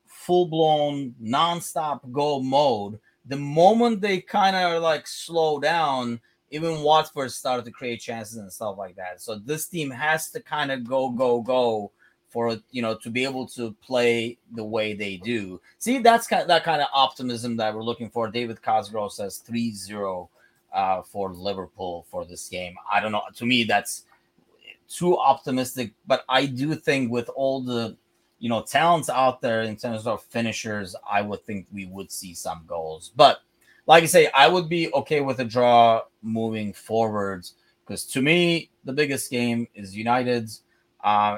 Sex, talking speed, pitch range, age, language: male, 175 wpm, 100-135 Hz, 30-49, English